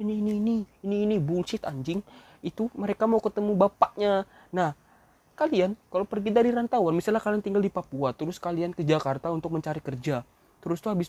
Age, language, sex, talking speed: 20-39, Malay, male, 185 wpm